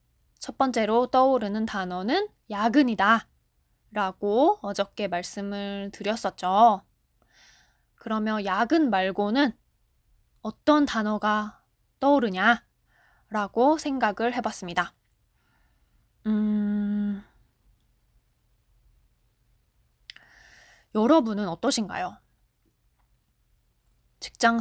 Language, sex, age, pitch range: Korean, female, 20-39, 200-270 Hz